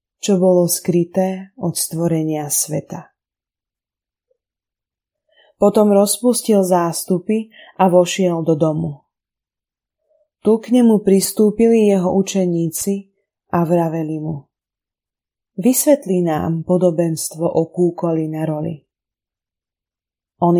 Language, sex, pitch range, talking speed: Slovak, female, 160-200 Hz, 85 wpm